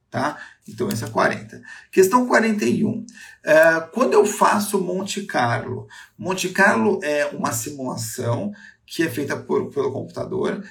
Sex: male